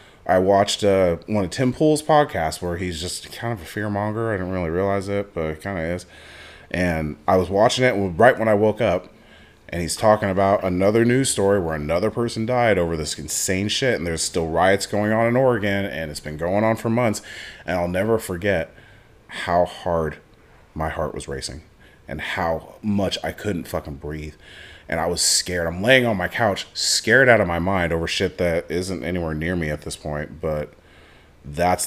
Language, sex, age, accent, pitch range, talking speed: English, male, 30-49, American, 80-115 Hz, 205 wpm